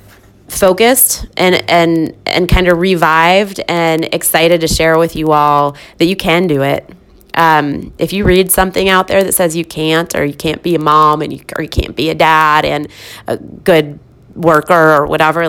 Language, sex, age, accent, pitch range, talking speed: English, female, 20-39, American, 155-190 Hz, 195 wpm